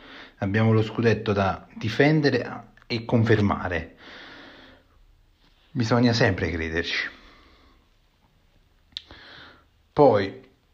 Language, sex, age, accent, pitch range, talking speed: Italian, male, 30-49, native, 95-120 Hz, 60 wpm